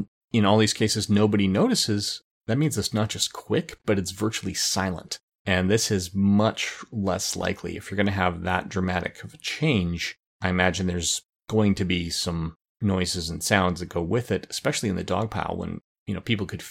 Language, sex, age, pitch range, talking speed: English, male, 30-49, 90-110 Hz, 195 wpm